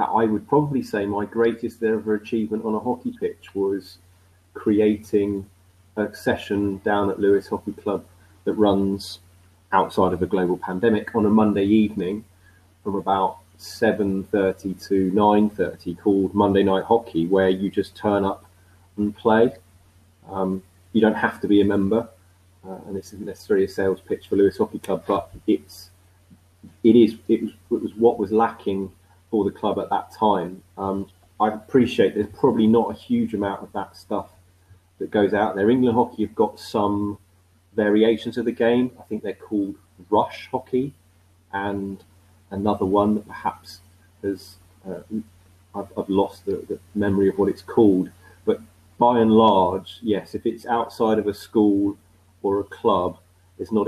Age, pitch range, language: 30-49, 95-110 Hz, English